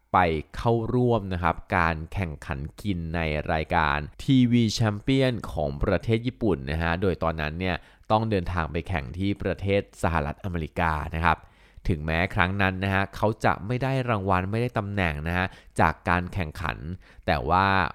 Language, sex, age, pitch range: Thai, male, 20-39, 85-105 Hz